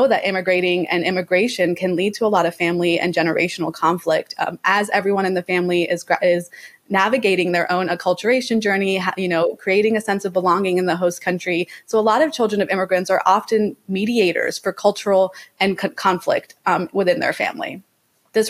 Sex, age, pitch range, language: female, 20-39, 180-215 Hz, Korean